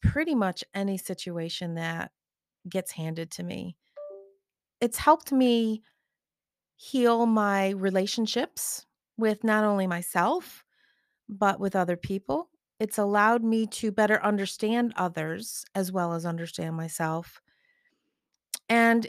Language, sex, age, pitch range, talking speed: English, female, 40-59, 190-235 Hz, 115 wpm